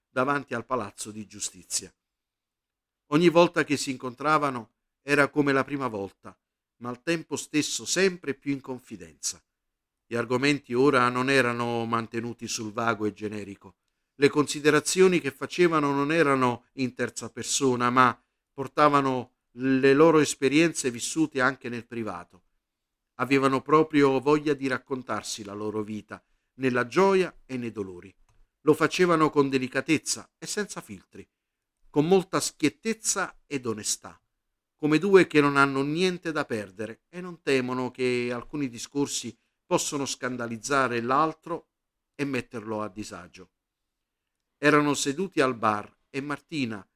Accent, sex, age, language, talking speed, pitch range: native, male, 50-69, Italian, 130 wpm, 115-145 Hz